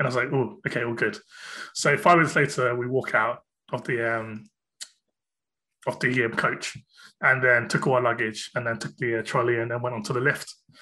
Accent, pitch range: British, 120-160 Hz